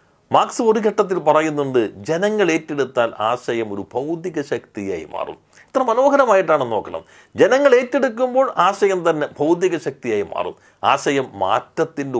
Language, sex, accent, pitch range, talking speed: Malayalam, male, native, 125-205 Hz, 115 wpm